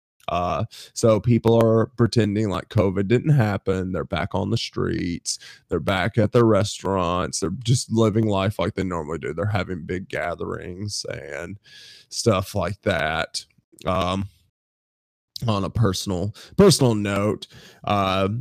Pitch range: 100-120 Hz